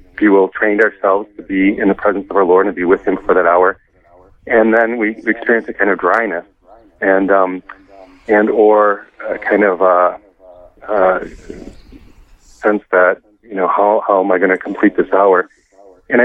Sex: male